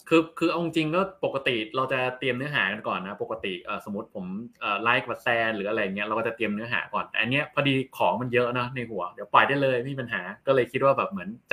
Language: Thai